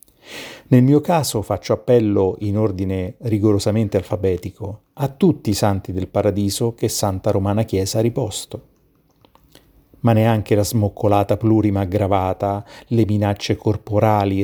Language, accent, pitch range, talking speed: Italian, native, 100-115 Hz, 125 wpm